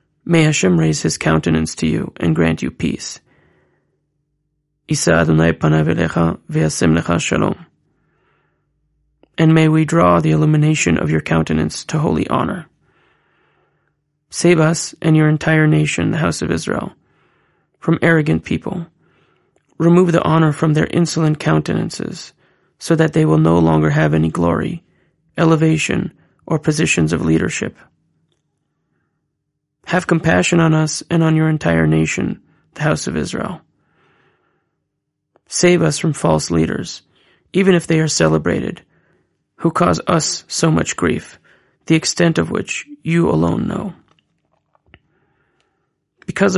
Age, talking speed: 30-49, 120 wpm